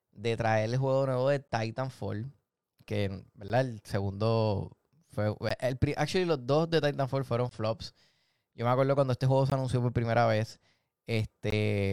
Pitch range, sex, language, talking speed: 110-135 Hz, male, Spanish, 165 wpm